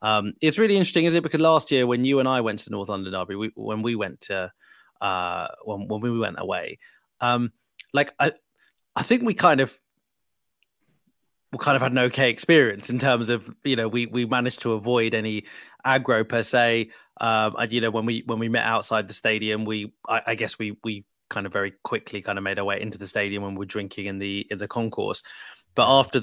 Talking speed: 230 wpm